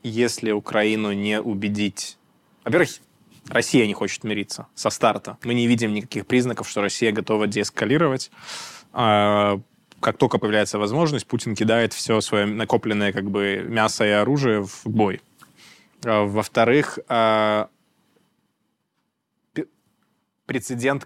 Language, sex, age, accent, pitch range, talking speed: Russian, male, 20-39, native, 105-125 Hz, 105 wpm